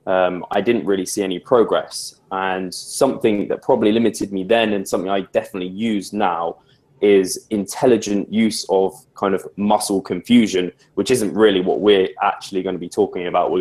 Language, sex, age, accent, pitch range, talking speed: English, male, 20-39, British, 95-115 Hz, 175 wpm